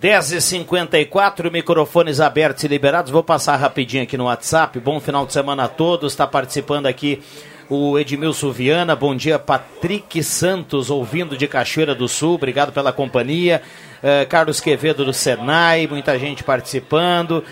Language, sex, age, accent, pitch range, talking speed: Portuguese, male, 50-69, Brazilian, 135-155 Hz, 145 wpm